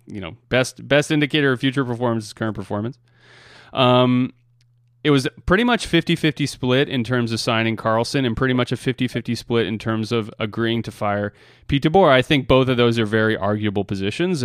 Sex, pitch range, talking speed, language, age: male, 110-125 Hz, 200 wpm, English, 30-49